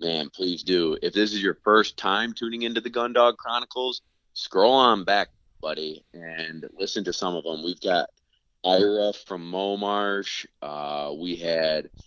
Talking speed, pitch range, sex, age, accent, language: 170 wpm, 85-105 Hz, male, 30-49, American, English